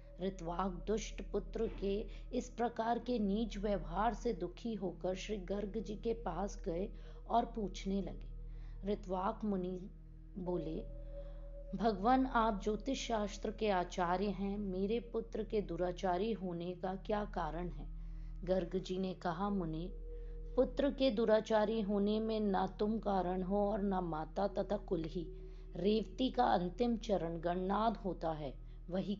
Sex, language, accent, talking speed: female, Hindi, native, 140 wpm